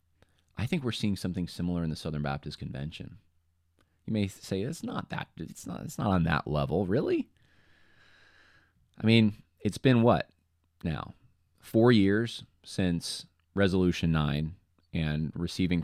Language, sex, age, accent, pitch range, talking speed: English, male, 20-39, American, 85-100 Hz, 145 wpm